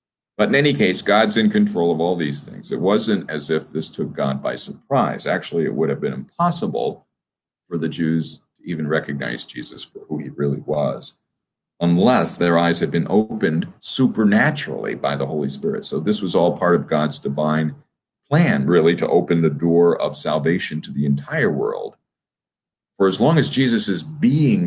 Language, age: English, 50-69